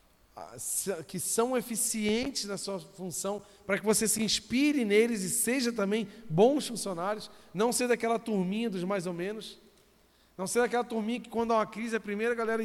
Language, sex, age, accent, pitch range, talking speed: Portuguese, male, 40-59, Brazilian, 160-210 Hz, 175 wpm